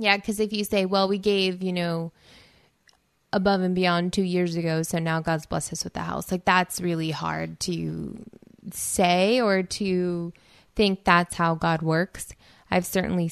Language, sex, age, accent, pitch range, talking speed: English, female, 20-39, American, 165-195 Hz, 175 wpm